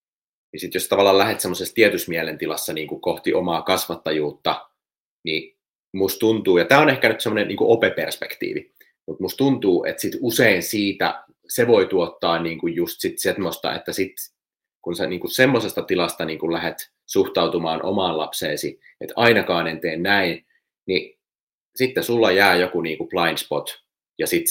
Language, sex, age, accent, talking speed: Finnish, male, 30-49, native, 155 wpm